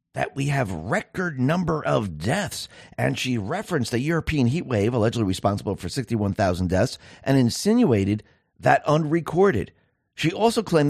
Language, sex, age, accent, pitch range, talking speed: English, male, 50-69, American, 105-150 Hz, 145 wpm